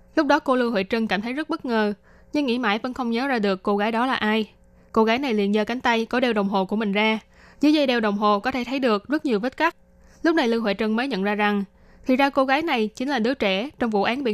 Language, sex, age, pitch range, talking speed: Vietnamese, female, 10-29, 205-255 Hz, 305 wpm